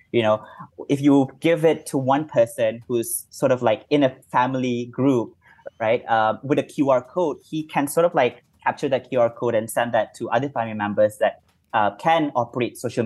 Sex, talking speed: male, 200 wpm